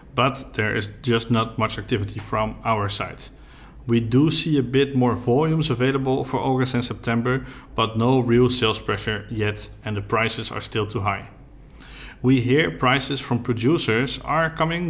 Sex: male